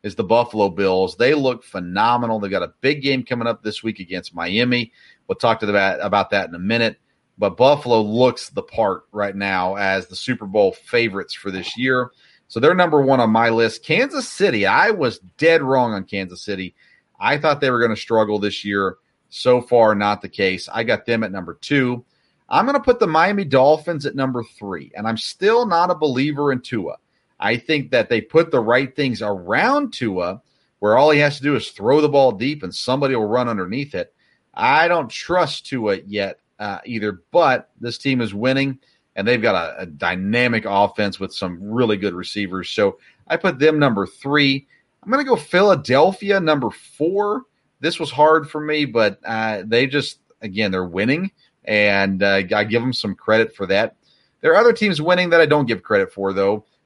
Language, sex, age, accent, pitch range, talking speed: English, male, 40-59, American, 105-150 Hz, 205 wpm